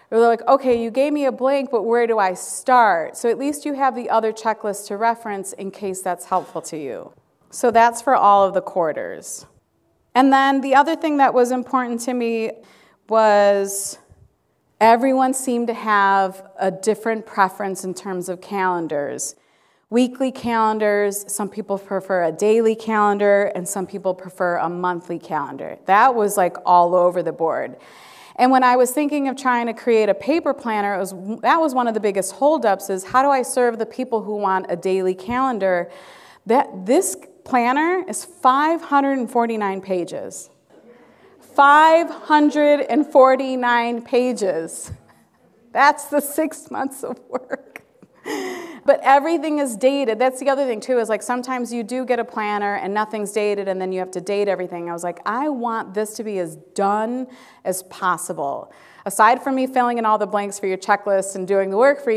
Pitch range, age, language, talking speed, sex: 195-255 Hz, 30-49, English, 175 wpm, female